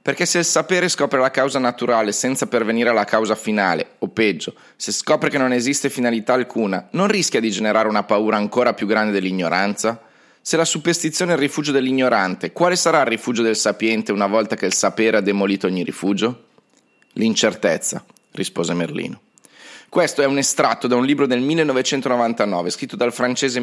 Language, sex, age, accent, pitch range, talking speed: Italian, male, 30-49, native, 115-150 Hz, 175 wpm